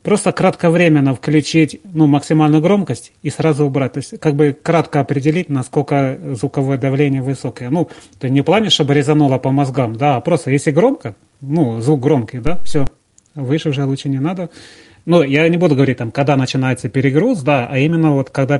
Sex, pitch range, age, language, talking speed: male, 135-155 Hz, 30-49, Russian, 180 wpm